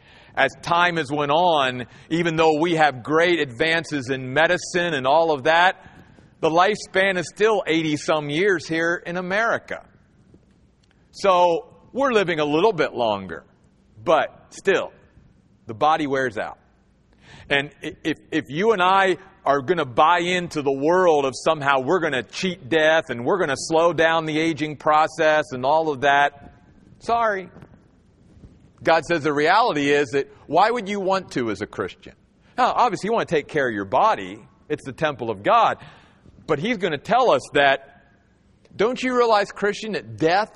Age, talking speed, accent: 40-59, 170 wpm, American